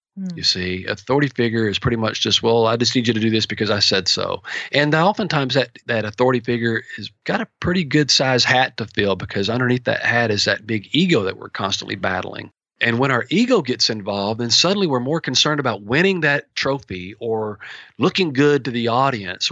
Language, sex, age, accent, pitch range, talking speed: English, male, 40-59, American, 110-140 Hz, 210 wpm